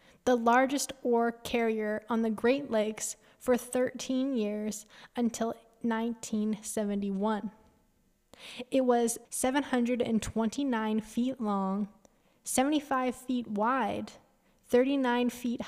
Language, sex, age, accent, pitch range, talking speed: English, female, 10-29, American, 220-255 Hz, 90 wpm